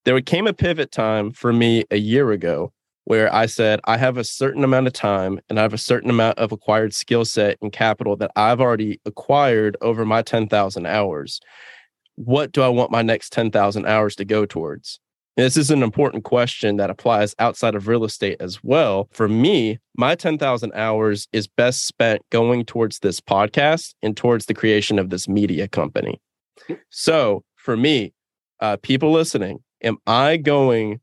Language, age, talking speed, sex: English, 20-39, 180 wpm, male